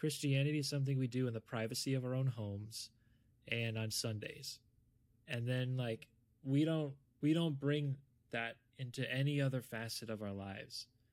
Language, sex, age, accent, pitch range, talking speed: English, male, 20-39, American, 110-125 Hz, 165 wpm